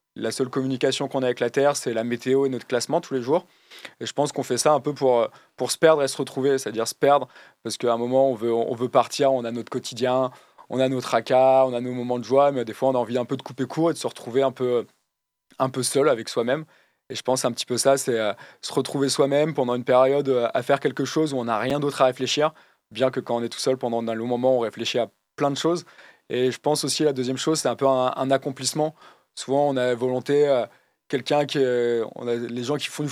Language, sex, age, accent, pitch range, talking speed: French, male, 20-39, French, 125-145 Hz, 275 wpm